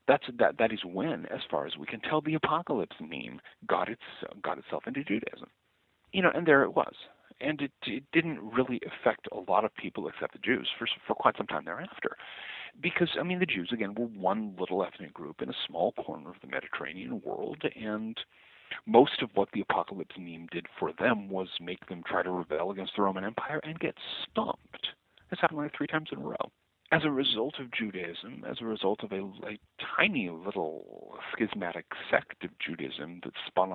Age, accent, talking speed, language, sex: 50-69, American, 205 wpm, English, male